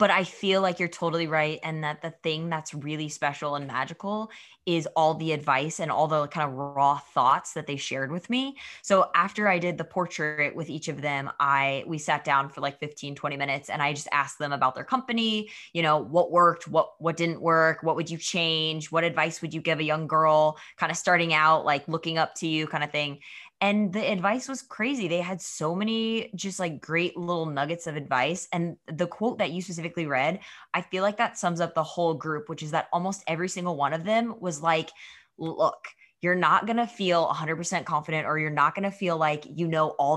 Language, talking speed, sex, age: English, 225 wpm, female, 20-39